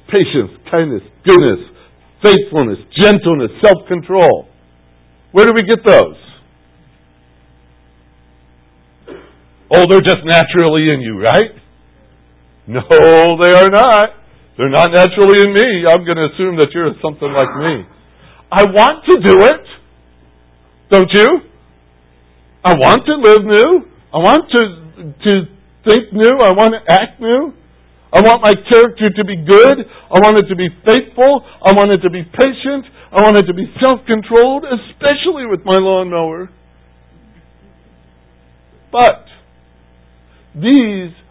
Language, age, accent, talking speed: English, 60-79, American, 130 wpm